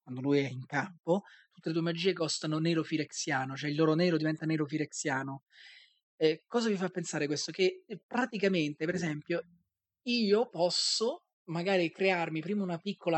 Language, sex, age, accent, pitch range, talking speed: Italian, male, 30-49, native, 160-190 Hz, 155 wpm